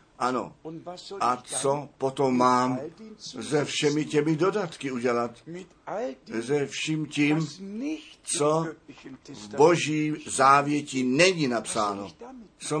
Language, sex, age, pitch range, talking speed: Czech, male, 60-79, 125-165 Hz, 95 wpm